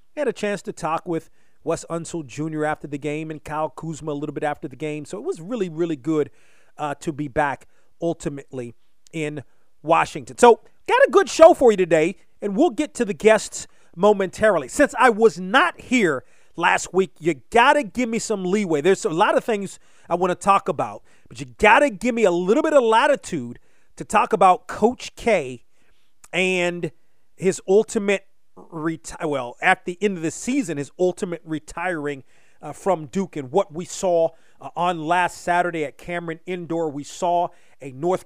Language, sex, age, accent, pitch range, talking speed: English, male, 30-49, American, 160-200 Hz, 190 wpm